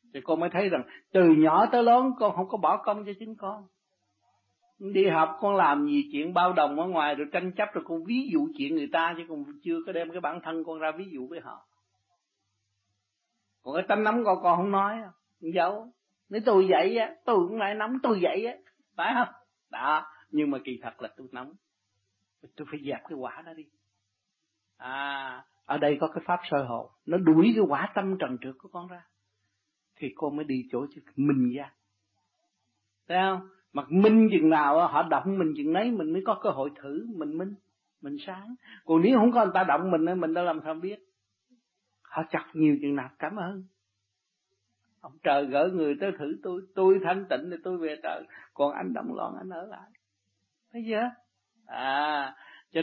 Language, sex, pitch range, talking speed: Vietnamese, male, 130-200 Hz, 205 wpm